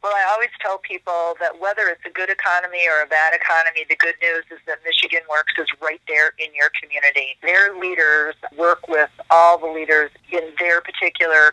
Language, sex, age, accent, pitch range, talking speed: English, female, 40-59, American, 155-175 Hz, 200 wpm